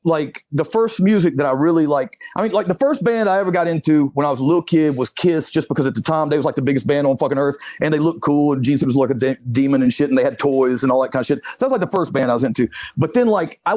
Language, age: English, 30-49